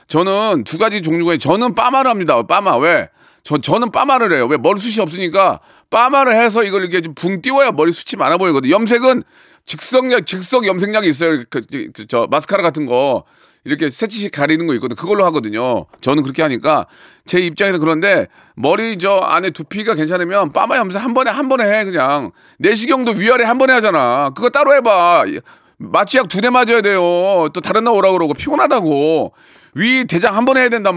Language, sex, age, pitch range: Korean, male, 40-59, 165-240 Hz